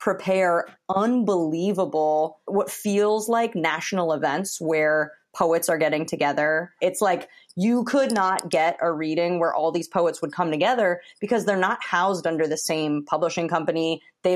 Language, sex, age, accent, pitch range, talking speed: English, female, 20-39, American, 150-180 Hz, 155 wpm